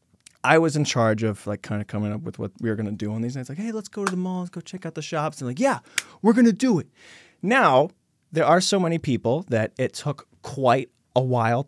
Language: English